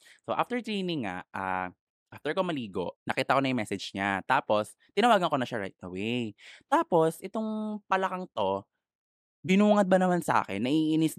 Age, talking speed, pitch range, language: 20-39, 165 wpm, 110-170 Hz, Filipino